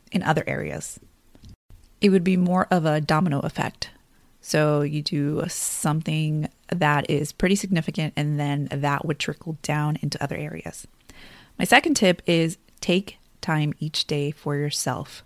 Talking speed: 150 wpm